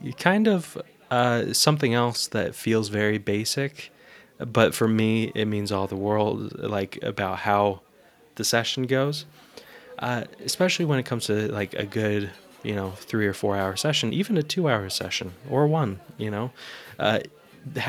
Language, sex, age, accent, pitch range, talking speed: English, male, 20-39, American, 105-135 Hz, 165 wpm